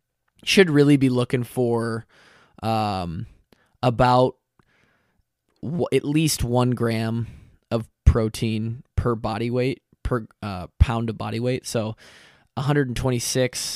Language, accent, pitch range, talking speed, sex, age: English, American, 105-125 Hz, 110 wpm, male, 20-39